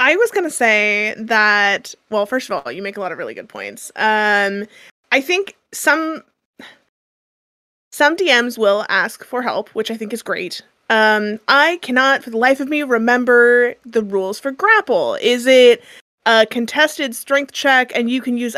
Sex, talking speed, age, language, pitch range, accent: female, 180 wpm, 30-49, English, 210-265 Hz, American